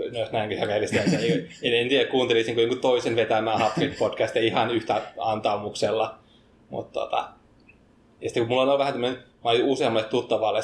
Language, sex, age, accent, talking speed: Finnish, male, 20-39, native, 145 wpm